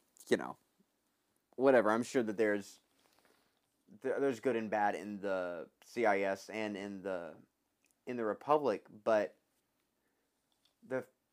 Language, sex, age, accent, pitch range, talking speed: English, male, 30-49, American, 110-145 Hz, 115 wpm